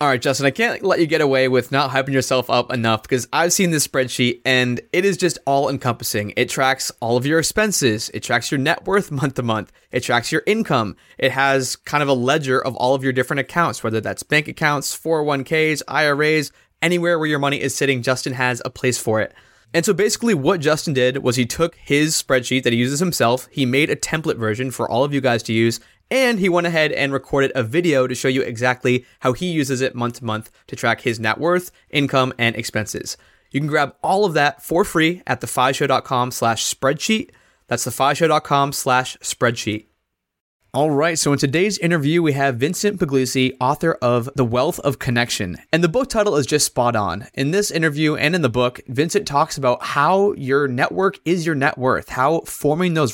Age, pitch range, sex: 20-39, 125-155 Hz, male